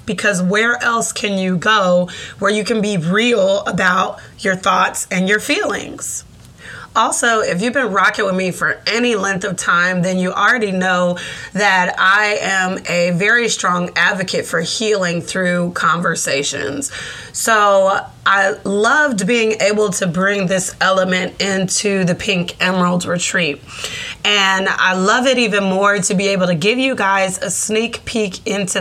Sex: female